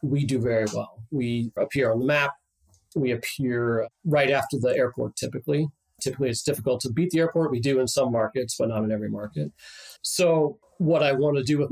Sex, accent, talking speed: male, American, 205 wpm